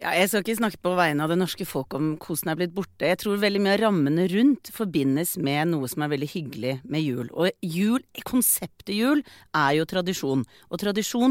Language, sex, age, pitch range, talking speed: English, female, 40-59, 155-200 Hz, 220 wpm